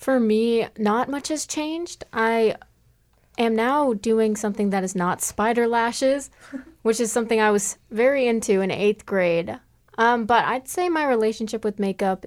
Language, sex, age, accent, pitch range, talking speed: English, female, 20-39, American, 190-235 Hz, 165 wpm